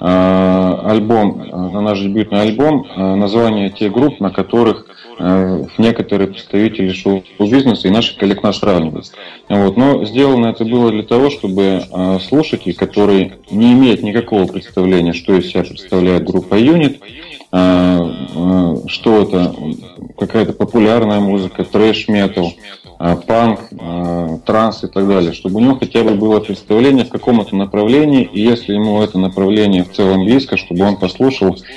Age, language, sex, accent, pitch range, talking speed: 30-49, Russian, male, native, 90-110 Hz, 130 wpm